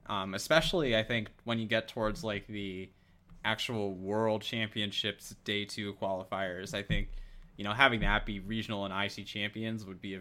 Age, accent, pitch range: 20-39, American, 100-120 Hz